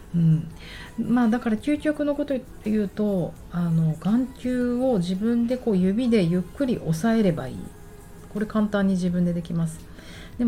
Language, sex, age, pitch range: Japanese, female, 30-49, 150-195 Hz